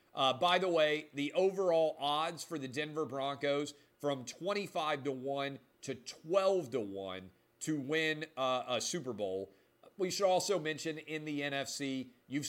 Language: English